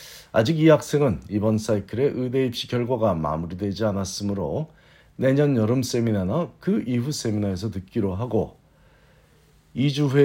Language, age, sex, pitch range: Korean, 50-69, male, 100-135 Hz